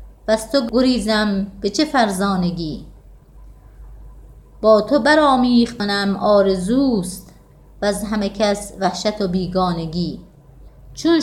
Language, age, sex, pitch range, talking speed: Persian, 30-49, female, 190-245 Hz, 95 wpm